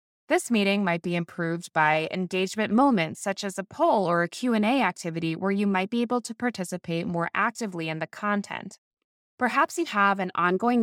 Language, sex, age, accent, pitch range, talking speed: English, female, 20-39, American, 180-245 Hz, 185 wpm